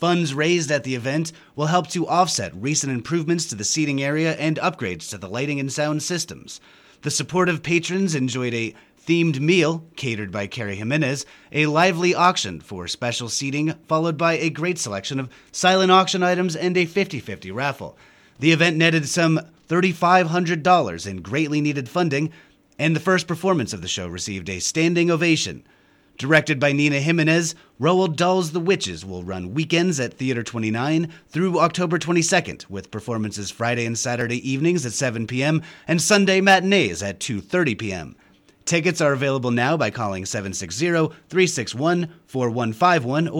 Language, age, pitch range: English, 30-49, 120-175 Hz